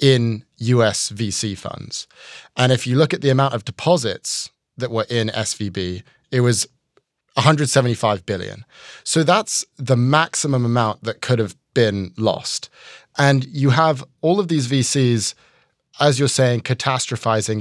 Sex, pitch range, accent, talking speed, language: male, 115-145 Hz, British, 145 wpm, English